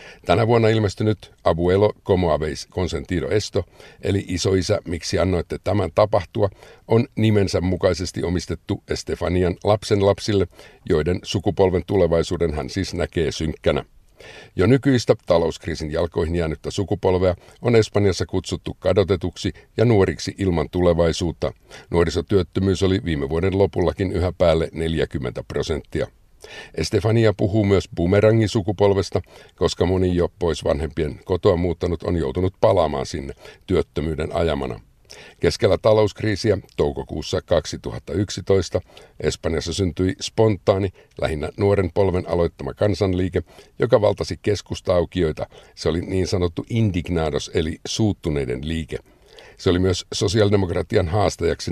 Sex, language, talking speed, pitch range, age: male, Finnish, 110 wpm, 85-105 Hz, 50-69